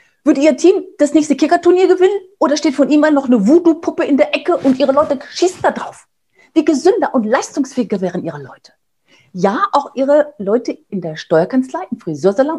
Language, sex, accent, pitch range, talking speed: German, female, German, 175-280 Hz, 190 wpm